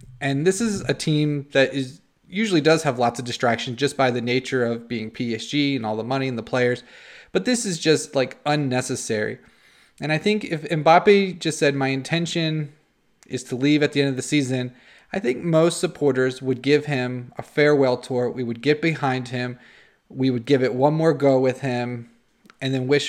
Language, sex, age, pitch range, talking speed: English, male, 20-39, 120-150 Hz, 205 wpm